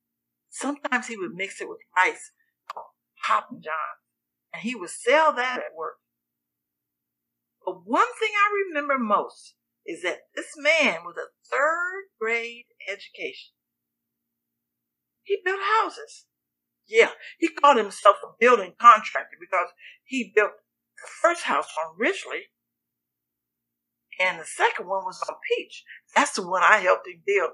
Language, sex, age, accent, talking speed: English, female, 60-79, American, 140 wpm